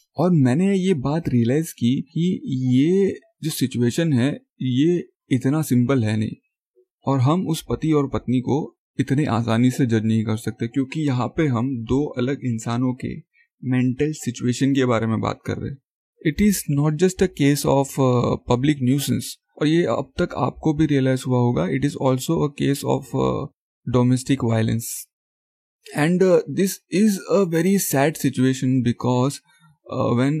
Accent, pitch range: native, 120-155 Hz